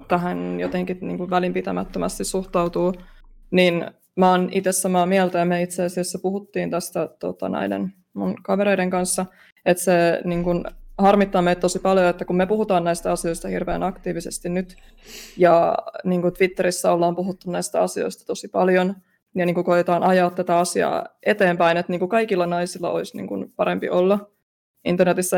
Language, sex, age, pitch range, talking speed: Finnish, female, 20-39, 175-195 Hz, 160 wpm